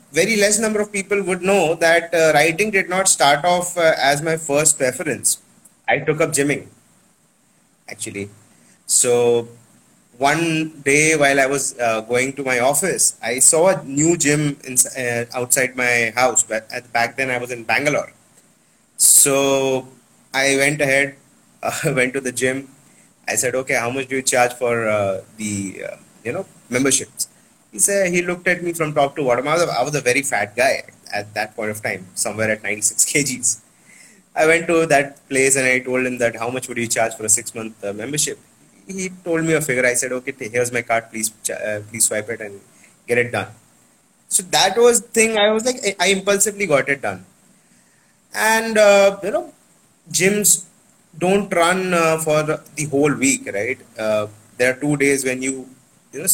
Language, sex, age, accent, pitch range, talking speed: English, male, 30-49, Indian, 120-165 Hz, 185 wpm